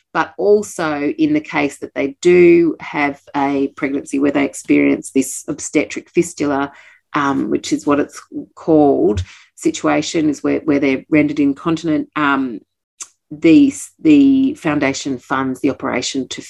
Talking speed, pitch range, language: 140 wpm, 140-185 Hz, English